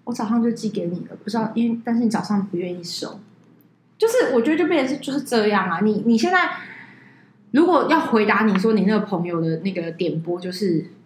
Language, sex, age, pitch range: Chinese, female, 20-39, 175-230 Hz